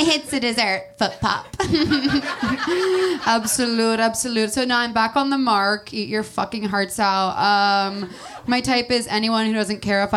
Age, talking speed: 20-39, 170 wpm